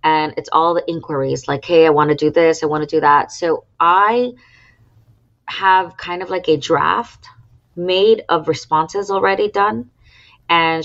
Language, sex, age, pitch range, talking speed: English, female, 30-49, 145-170 Hz, 170 wpm